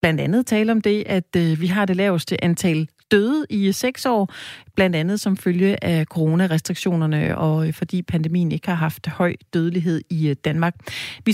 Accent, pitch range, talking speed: native, 165-215 Hz, 170 wpm